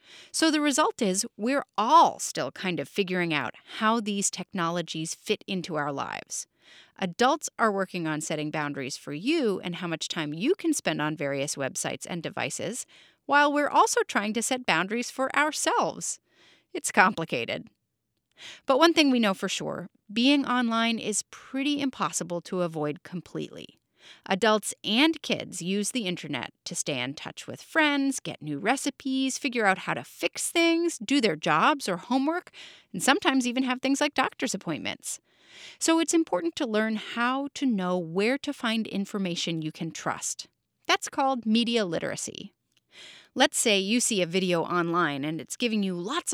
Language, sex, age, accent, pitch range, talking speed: English, female, 30-49, American, 180-275 Hz, 165 wpm